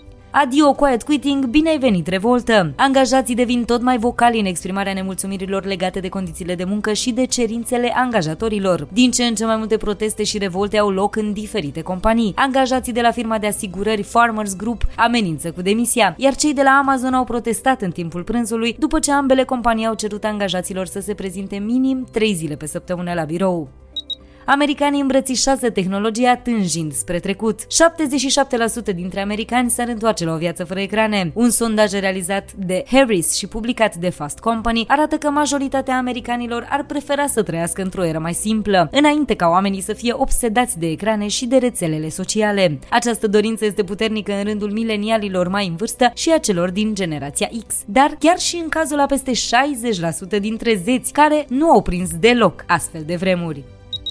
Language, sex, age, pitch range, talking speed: Romanian, female, 20-39, 195-250 Hz, 180 wpm